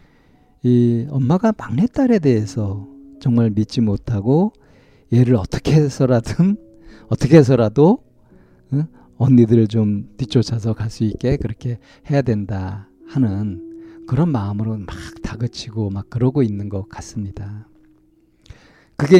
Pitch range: 110-145 Hz